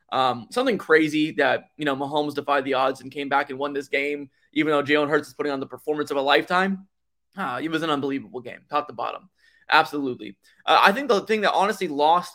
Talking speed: 230 wpm